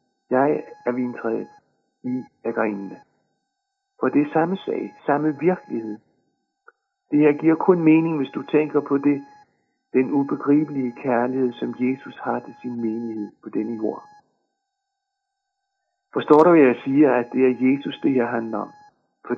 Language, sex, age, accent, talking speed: Danish, male, 60-79, native, 150 wpm